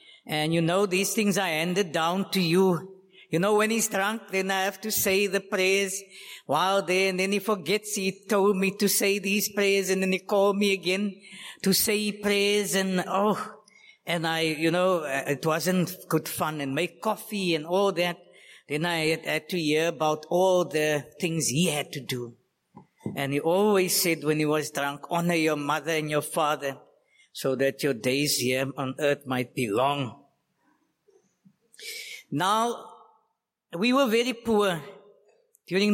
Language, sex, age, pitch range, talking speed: English, female, 50-69, 155-200 Hz, 170 wpm